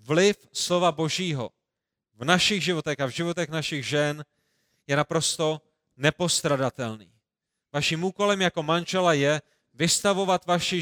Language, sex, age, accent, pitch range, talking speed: Czech, male, 30-49, native, 150-185 Hz, 115 wpm